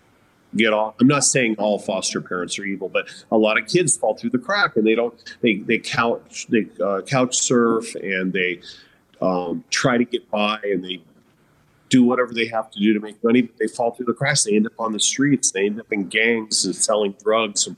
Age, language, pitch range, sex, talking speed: 40-59, English, 105-125 Hz, male, 230 wpm